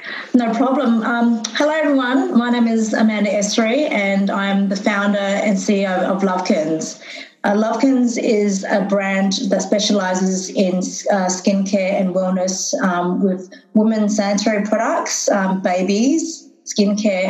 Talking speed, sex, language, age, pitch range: 130 wpm, female, English, 30-49, 185-215 Hz